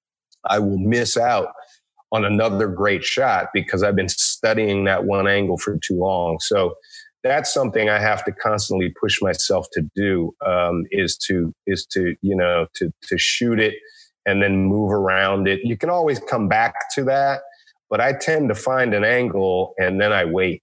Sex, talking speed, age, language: male, 185 wpm, 30-49, English